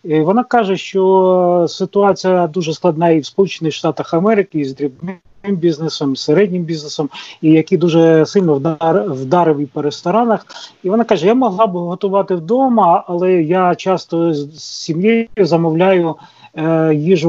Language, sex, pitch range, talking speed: Ukrainian, male, 160-195 Hz, 140 wpm